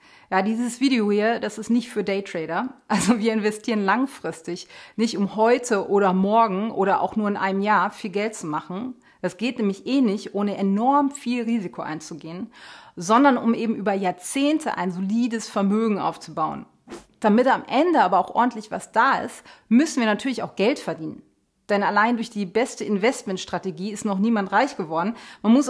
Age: 30-49